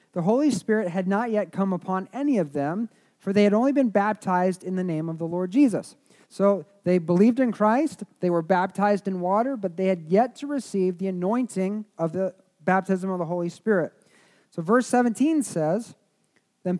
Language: English